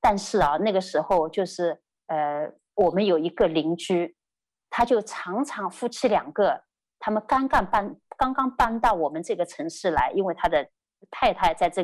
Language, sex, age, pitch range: Chinese, female, 30-49, 170-260 Hz